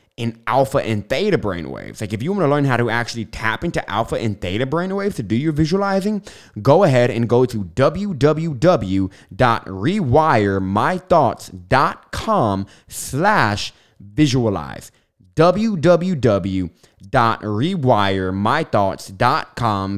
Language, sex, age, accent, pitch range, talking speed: English, male, 20-39, American, 105-155 Hz, 100 wpm